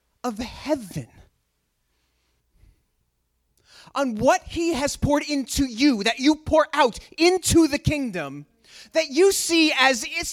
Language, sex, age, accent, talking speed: English, male, 30-49, American, 120 wpm